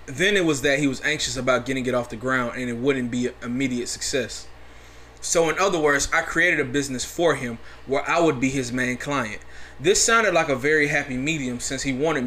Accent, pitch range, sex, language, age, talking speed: American, 110-145 Hz, male, English, 20-39, 225 wpm